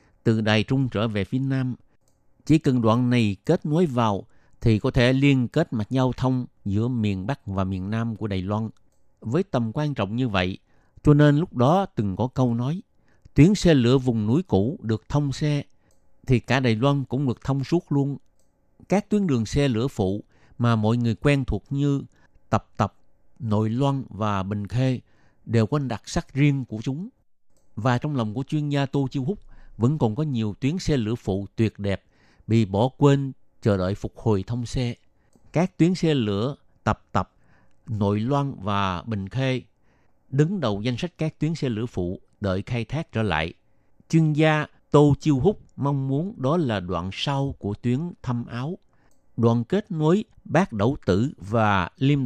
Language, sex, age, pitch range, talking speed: Vietnamese, male, 50-69, 105-140 Hz, 190 wpm